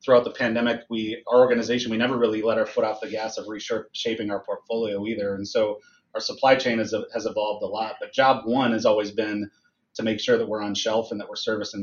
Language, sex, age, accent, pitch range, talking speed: English, male, 30-49, American, 110-135 Hz, 240 wpm